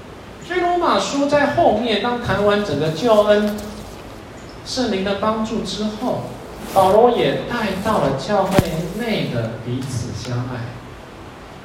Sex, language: male, Chinese